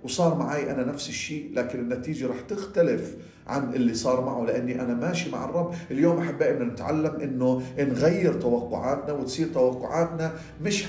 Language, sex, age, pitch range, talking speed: Arabic, male, 50-69, 120-160 Hz, 155 wpm